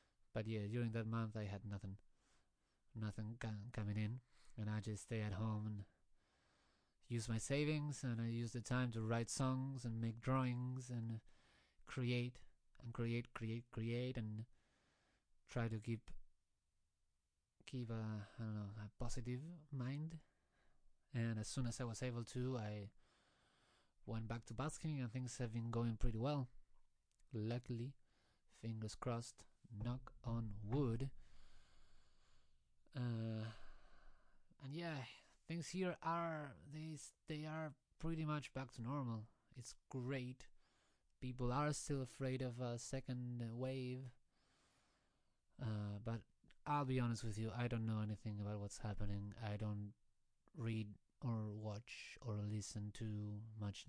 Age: 30-49